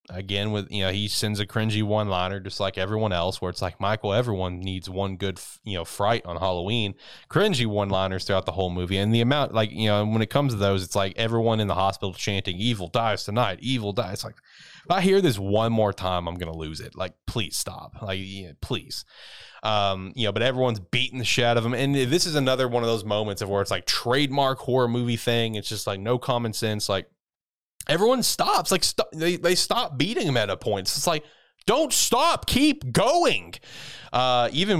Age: 20-39